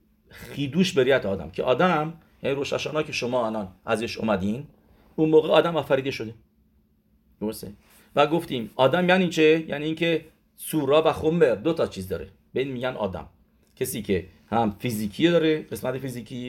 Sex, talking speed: male, 155 wpm